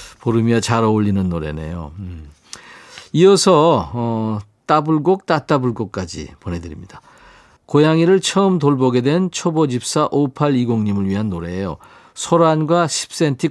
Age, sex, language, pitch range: 50-69, male, Korean, 110-165 Hz